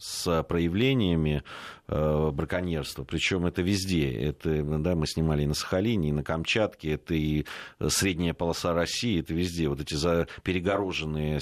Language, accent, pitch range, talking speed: Russian, native, 75-90 Hz, 135 wpm